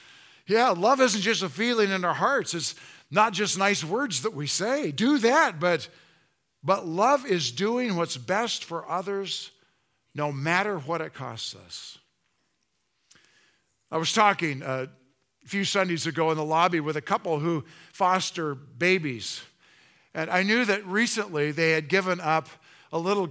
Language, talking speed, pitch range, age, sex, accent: English, 155 wpm, 145-190 Hz, 50-69, male, American